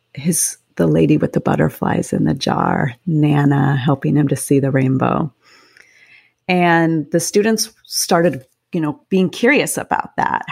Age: 30-49